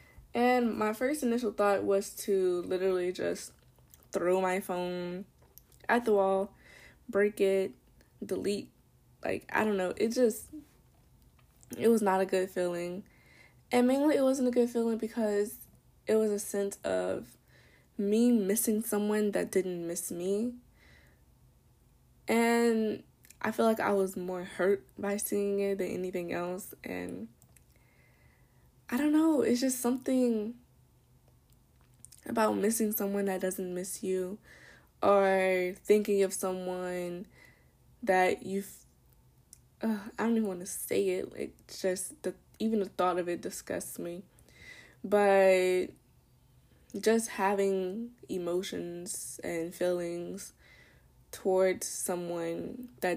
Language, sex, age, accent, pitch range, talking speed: English, female, 10-29, American, 185-220 Hz, 125 wpm